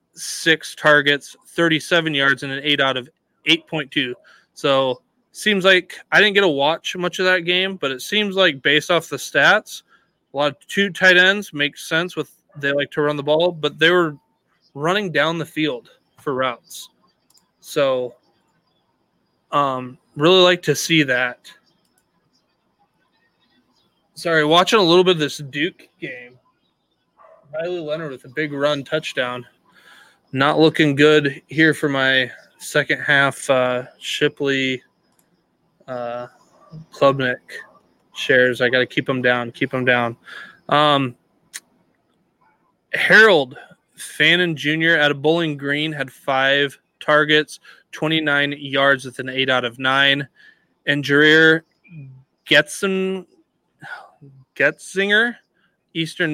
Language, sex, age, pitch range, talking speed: English, male, 20-39, 135-165 Hz, 130 wpm